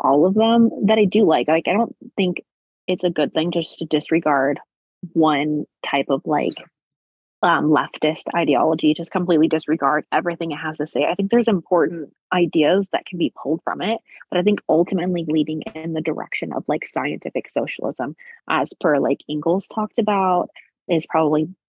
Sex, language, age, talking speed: female, English, 20-39, 175 wpm